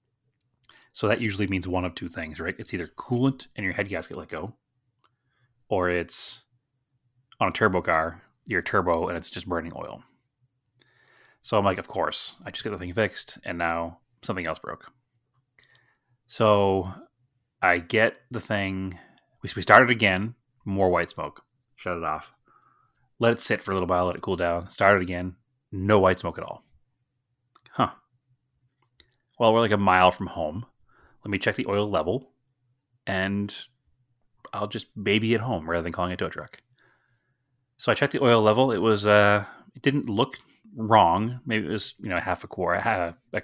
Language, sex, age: English, male, 30-49